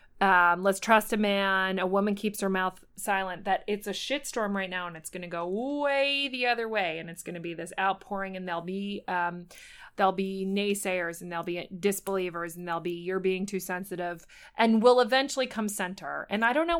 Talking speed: 220 wpm